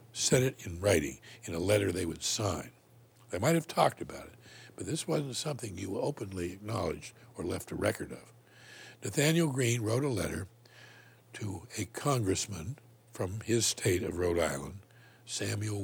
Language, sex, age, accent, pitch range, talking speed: English, male, 60-79, American, 105-125 Hz, 165 wpm